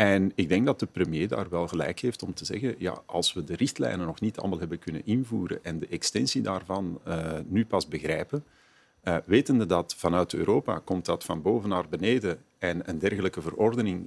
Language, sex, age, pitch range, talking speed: Dutch, male, 40-59, 90-110 Hz, 200 wpm